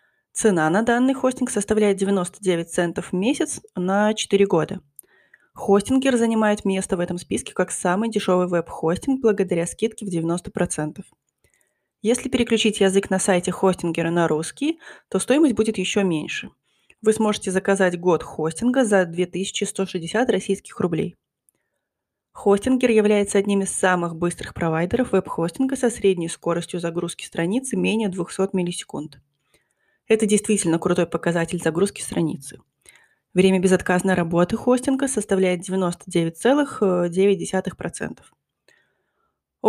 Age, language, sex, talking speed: 20-39, Russian, female, 115 wpm